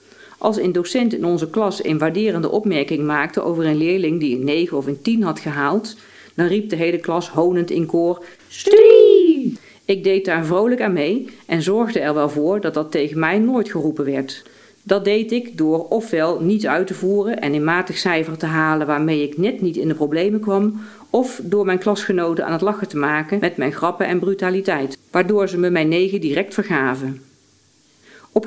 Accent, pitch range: Dutch, 155-205 Hz